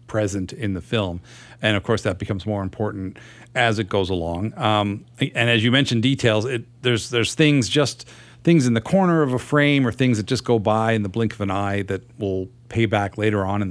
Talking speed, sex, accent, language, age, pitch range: 230 wpm, male, American, English, 40-59, 100-120 Hz